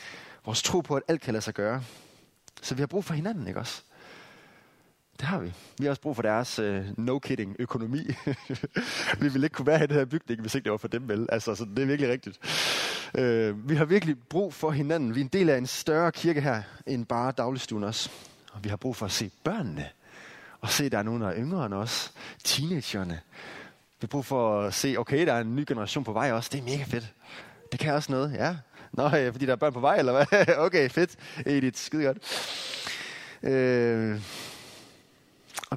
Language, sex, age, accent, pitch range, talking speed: Danish, male, 20-39, native, 115-145 Hz, 215 wpm